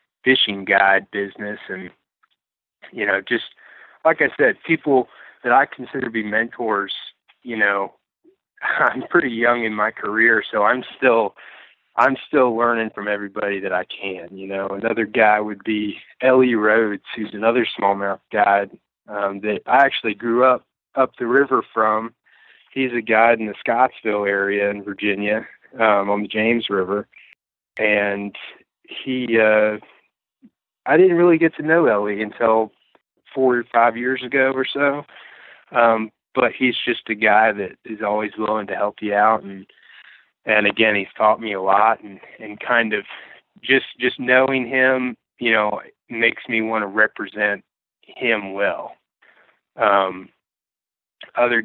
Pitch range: 100-120 Hz